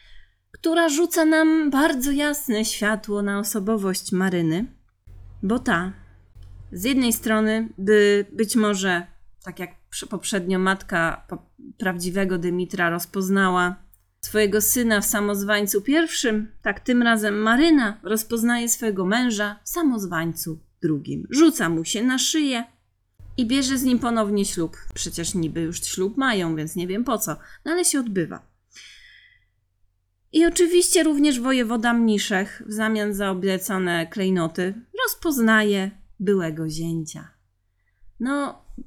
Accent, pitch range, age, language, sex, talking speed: native, 170-240 Hz, 30-49, Polish, female, 120 wpm